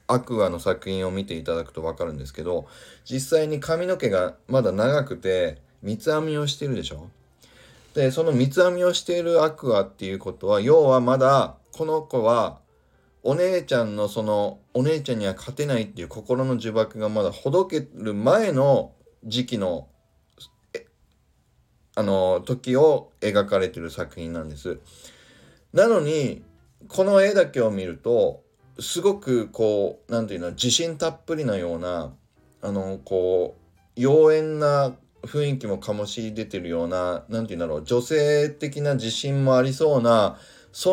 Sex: male